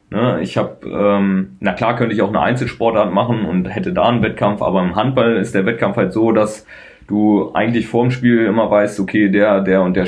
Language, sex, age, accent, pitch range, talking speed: German, male, 20-39, German, 95-120 Hz, 225 wpm